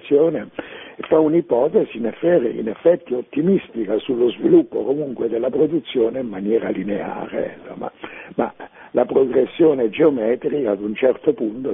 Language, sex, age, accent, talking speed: Italian, male, 60-79, native, 130 wpm